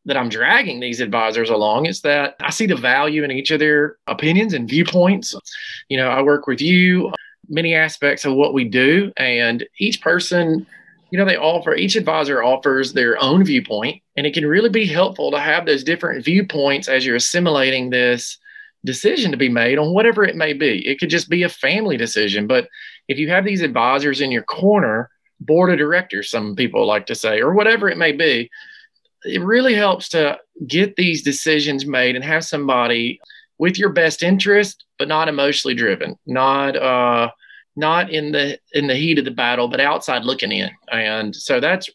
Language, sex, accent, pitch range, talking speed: English, male, American, 135-185 Hz, 190 wpm